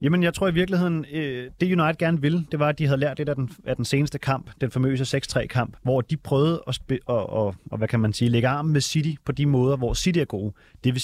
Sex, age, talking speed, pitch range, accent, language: male, 30-49, 245 wpm, 120-150 Hz, native, Danish